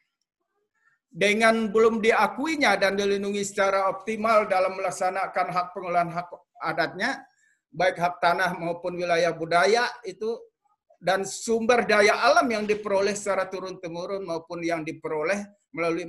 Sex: male